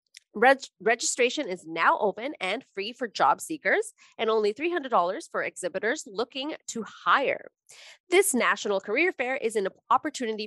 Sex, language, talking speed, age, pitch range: female, English, 140 wpm, 30-49, 195-280 Hz